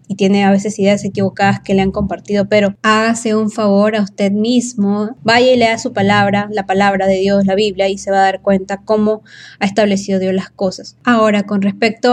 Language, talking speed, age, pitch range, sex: Spanish, 215 wpm, 20-39, 195-220 Hz, female